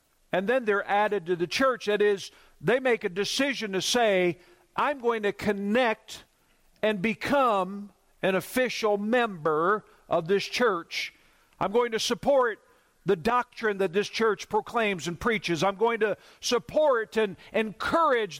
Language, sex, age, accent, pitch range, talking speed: English, male, 50-69, American, 185-240 Hz, 145 wpm